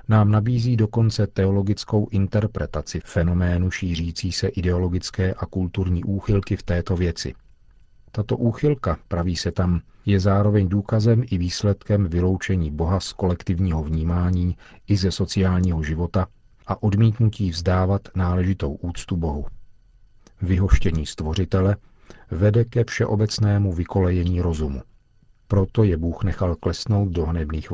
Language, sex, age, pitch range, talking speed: Czech, male, 40-59, 85-100 Hz, 115 wpm